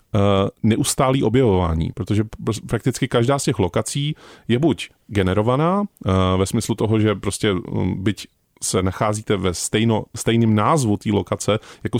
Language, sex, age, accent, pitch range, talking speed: Czech, male, 30-49, native, 100-125 Hz, 125 wpm